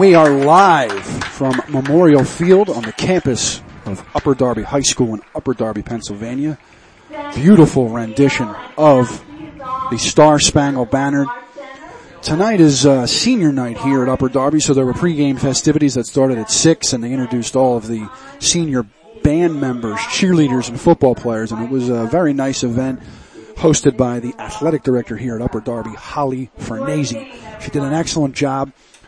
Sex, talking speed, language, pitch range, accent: male, 165 wpm, English, 120-155 Hz, American